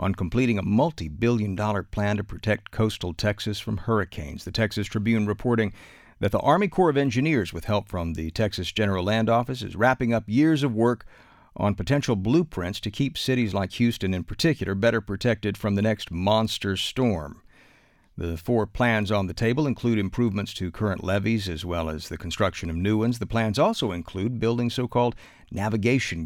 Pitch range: 95-120 Hz